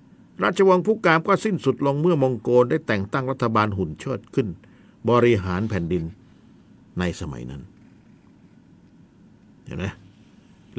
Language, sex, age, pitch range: Thai, male, 60-79, 100-145 Hz